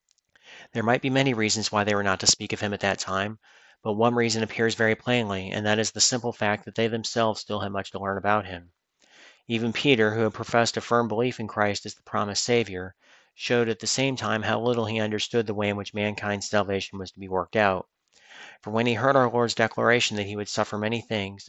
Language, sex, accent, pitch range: English, male, American, 105-115 Hz